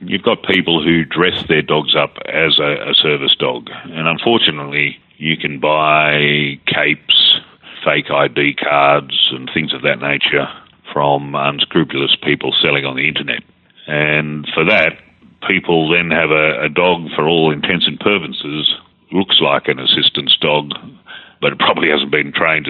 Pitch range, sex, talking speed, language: 70-80 Hz, male, 155 wpm, English